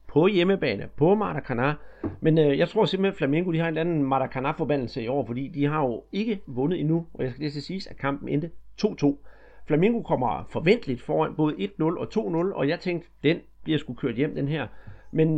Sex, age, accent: male, 40-59, native